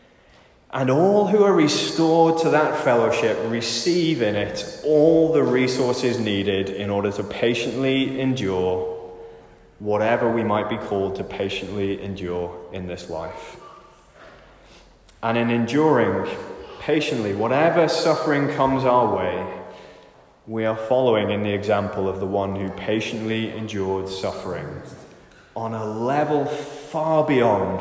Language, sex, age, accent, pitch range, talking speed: English, male, 20-39, British, 105-160 Hz, 125 wpm